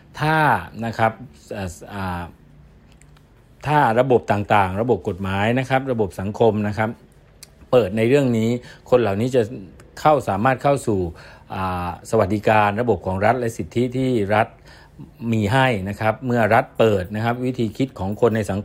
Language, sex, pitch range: Thai, male, 100-125 Hz